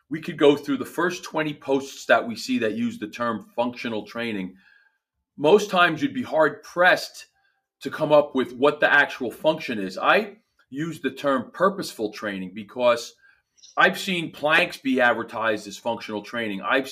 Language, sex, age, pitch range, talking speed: English, male, 40-59, 115-160 Hz, 170 wpm